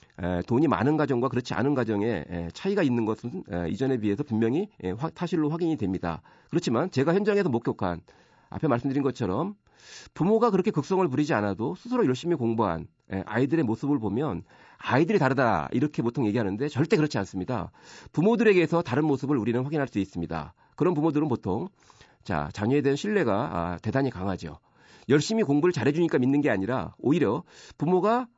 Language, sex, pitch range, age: Korean, male, 105-165 Hz, 40-59